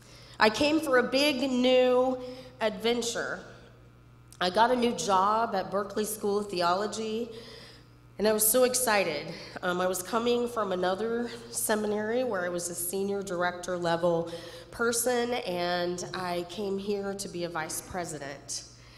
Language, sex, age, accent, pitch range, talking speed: English, female, 30-49, American, 155-205 Hz, 145 wpm